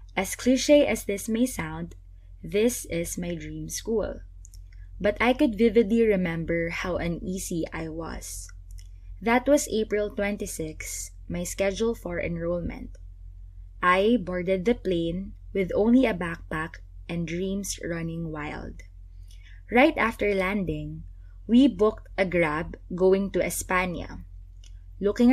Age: 20-39